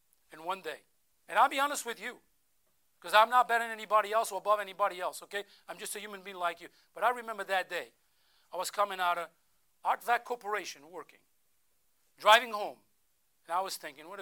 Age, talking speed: 50-69, 205 wpm